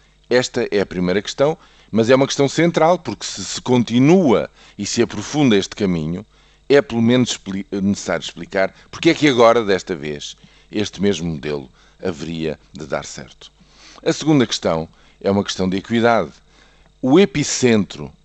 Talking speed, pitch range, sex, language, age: 155 wpm, 90-125 Hz, male, Portuguese, 50-69